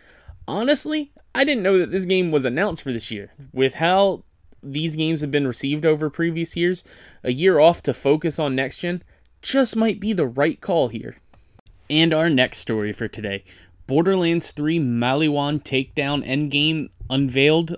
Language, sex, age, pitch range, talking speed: English, male, 20-39, 115-165 Hz, 160 wpm